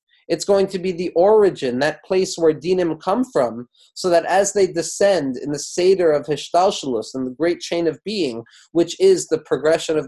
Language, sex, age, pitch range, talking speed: English, male, 30-49, 145-185 Hz, 195 wpm